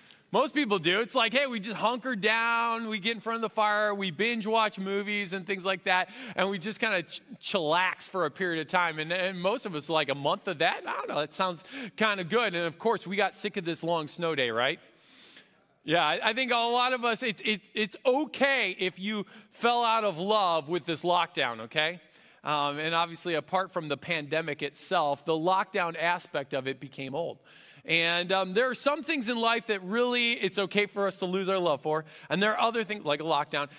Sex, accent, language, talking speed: male, American, English, 235 wpm